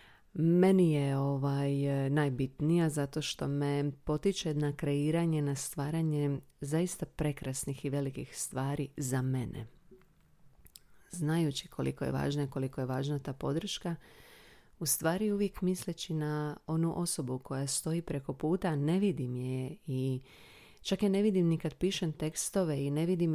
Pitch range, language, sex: 135-165 Hz, Croatian, female